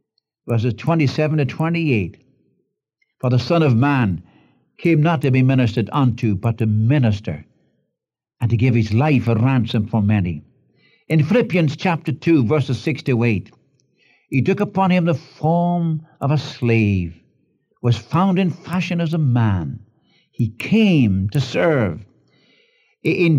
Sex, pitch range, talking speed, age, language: male, 115-160 Hz, 145 wpm, 60-79, English